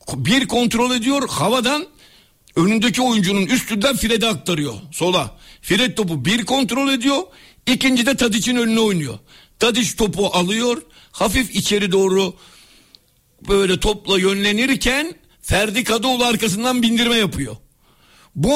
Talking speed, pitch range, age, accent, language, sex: 115 wpm, 170-235 Hz, 60-79, native, Turkish, male